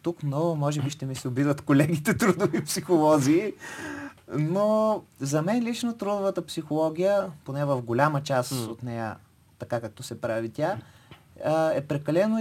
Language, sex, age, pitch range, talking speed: Bulgarian, male, 30-49, 145-200 Hz, 145 wpm